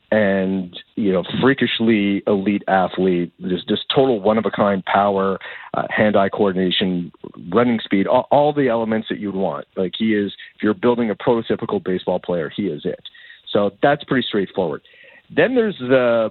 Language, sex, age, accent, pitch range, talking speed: English, male, 50-69, American, 95-120 Hz, 160 wpm